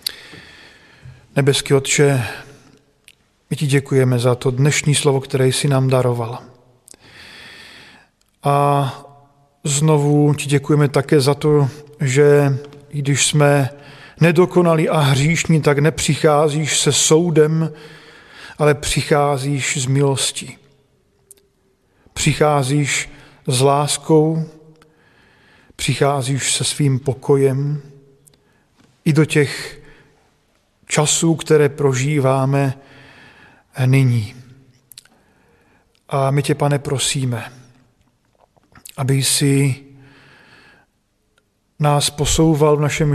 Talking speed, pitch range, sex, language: 85 wpm, 135-150 Hz, male, Czech